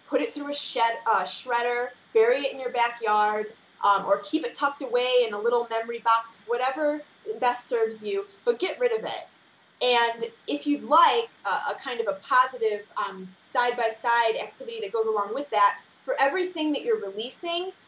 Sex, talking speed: female, 190 wpm